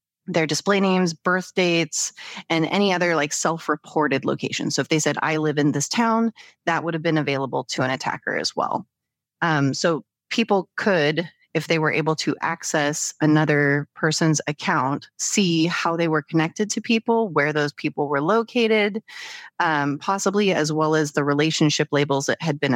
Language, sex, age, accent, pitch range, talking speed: English, female, 30-49, American, 150-180 Hz, 175 wpm